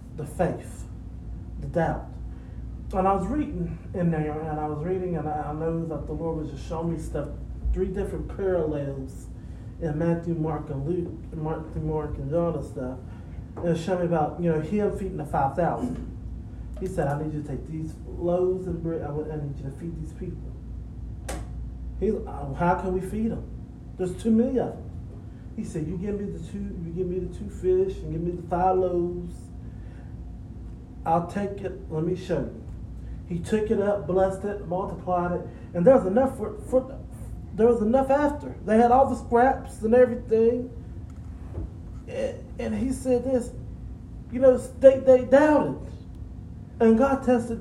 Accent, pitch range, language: American, 150-220 Hz, English